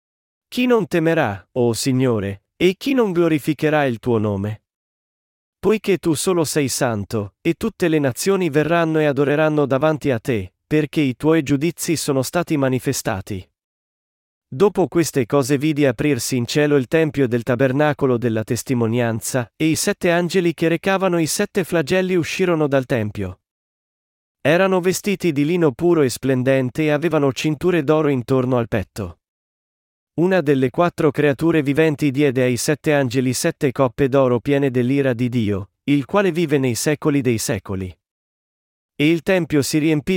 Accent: native